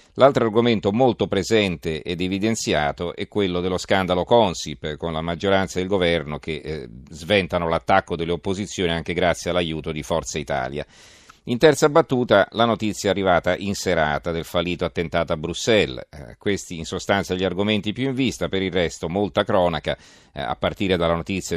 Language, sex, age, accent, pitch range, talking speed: Italian, male, 40-59, native, 80-100 Hz, 170 wpm